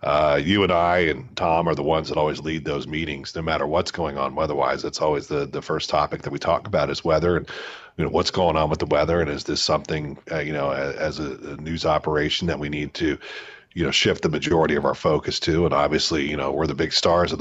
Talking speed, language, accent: 260 wpm, English, American